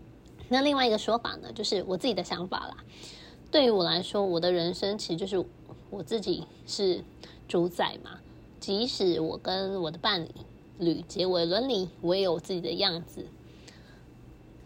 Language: Chinese